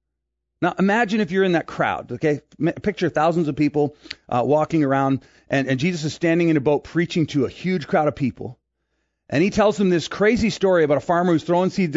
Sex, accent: male, American